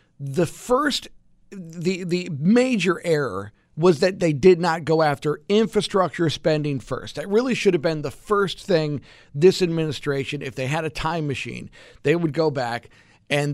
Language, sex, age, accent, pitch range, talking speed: English, male, 50-69, American, 135-185 Hz, 165 wpm